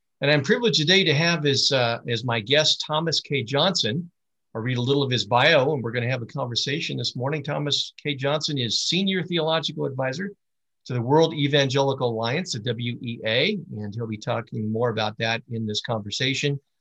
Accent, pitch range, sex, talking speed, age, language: American, 120-155 Hz, male, 195 wpm, 50-69, English